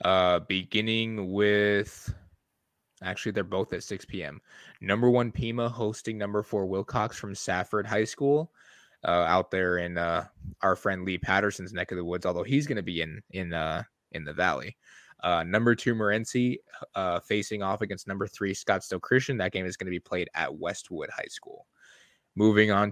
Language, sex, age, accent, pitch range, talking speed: English, male, 20-39, American, 95-115 Hz, 185 wpm